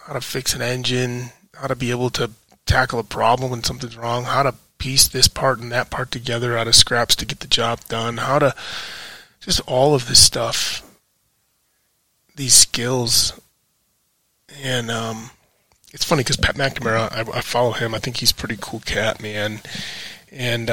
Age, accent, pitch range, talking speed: 20-39, American, 115-135 Hz, 180 wpm